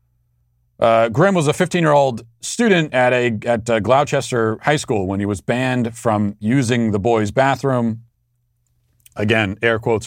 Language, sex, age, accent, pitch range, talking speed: English, male, 40-59, American, 110-135 Hz, 150 wpm